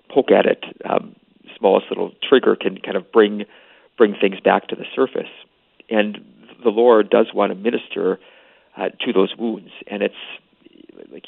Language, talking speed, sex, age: English, 165 wpm, male, 40-59